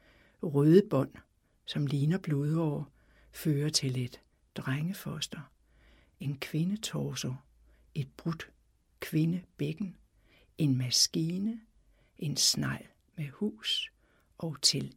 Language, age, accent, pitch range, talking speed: Danish, 60-79, native, 135-180 Hz, 90 wpm